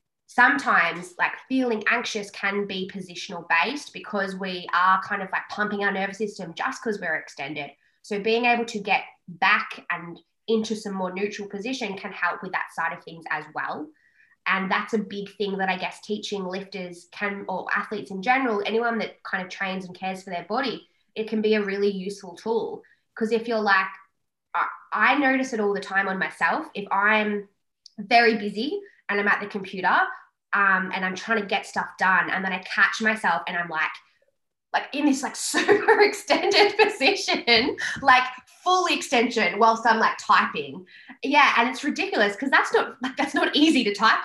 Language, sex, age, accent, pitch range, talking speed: English, female, 20-39, Australian, 195-255 Hz, 190 wpm